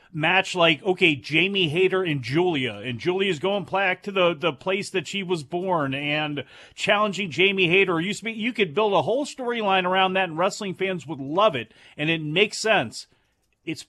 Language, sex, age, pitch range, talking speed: English, male, 40-59, 155-190 Hz, 195 wpm